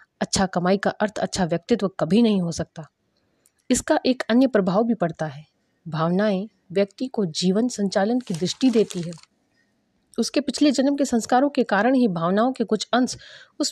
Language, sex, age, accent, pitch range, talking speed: Hindi, female, 30-49, native, 180-235 Hz, 170 wpm